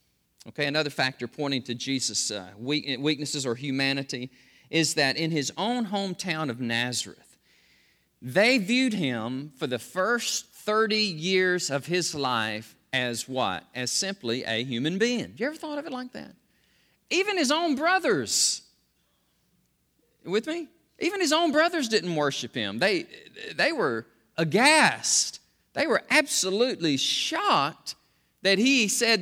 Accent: American